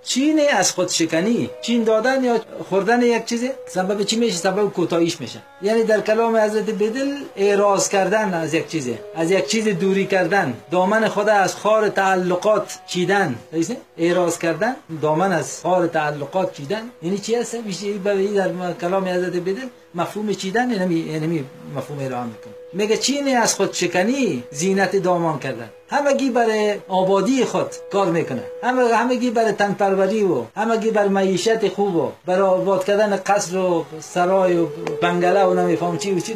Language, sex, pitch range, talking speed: Persian, male, 165-215 Hz, 165 wpm